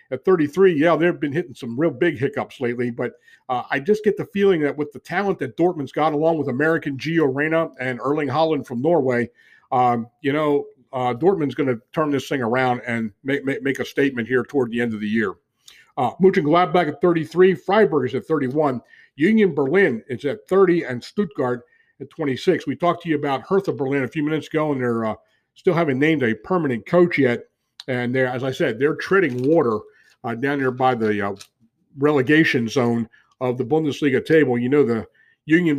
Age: 50-69